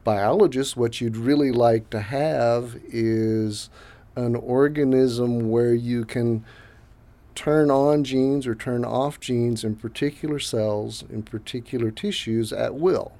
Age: 40-59